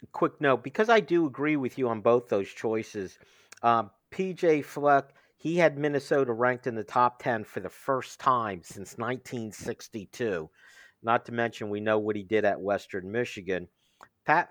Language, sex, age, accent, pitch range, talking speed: English, male, 50-69, American, 115-155 Hz, 170 wpm